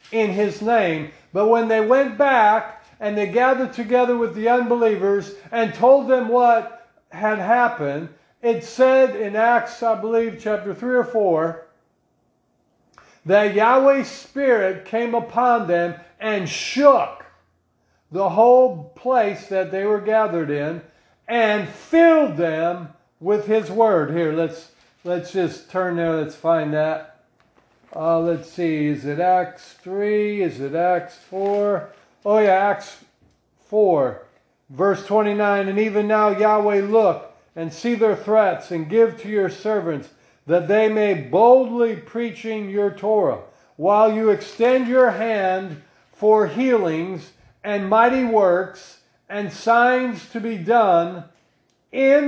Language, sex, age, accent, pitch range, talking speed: English, male, 50-69, American, 175-230 Hz, 135 wpm